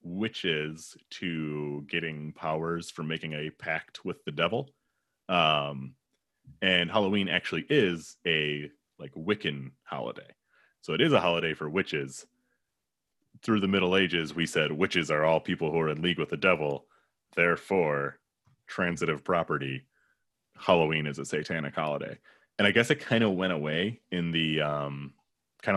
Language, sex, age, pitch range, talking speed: English, male, 30-49, 75-90 Hz, 150 wpm